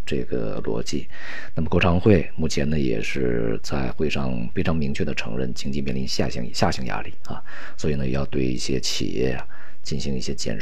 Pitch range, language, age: 65-85 Hz, Chinese, 50-69